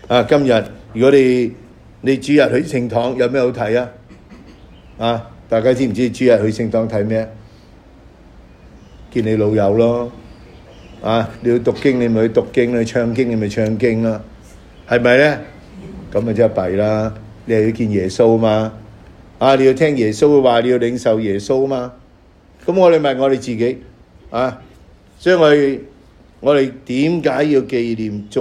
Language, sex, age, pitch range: English, male, 50-69, 100-130 Hz